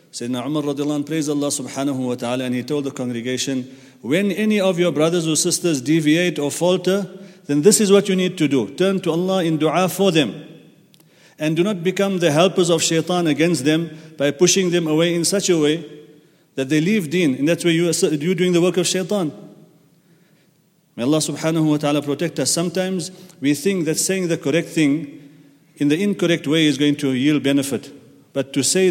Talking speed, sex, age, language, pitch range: 200 wpm, male, 40-59, English, 135-170 Hz